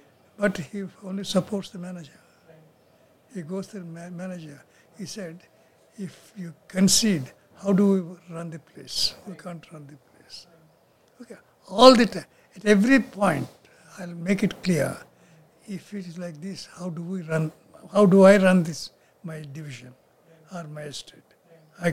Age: 60-79